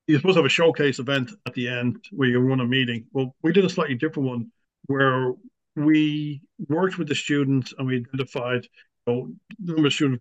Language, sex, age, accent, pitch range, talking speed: English, male, 60-79, Irish, 125-150 Hz, 210 wpm